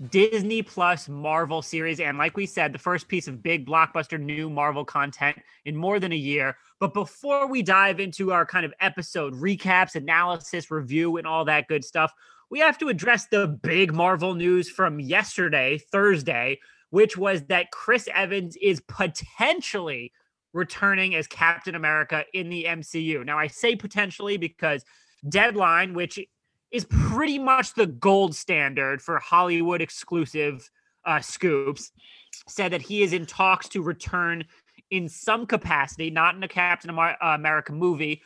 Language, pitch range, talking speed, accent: English, 155-195 Hz, 155 wpm, American